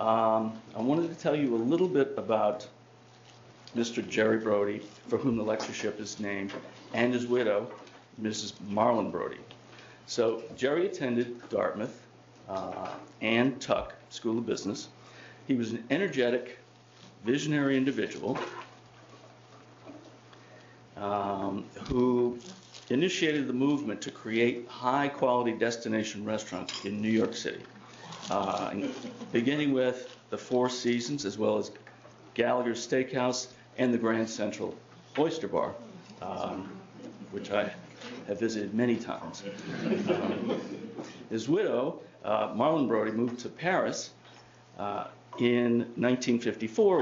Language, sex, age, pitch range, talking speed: English, male, 50-69, 110-125 Hz, 120 wpm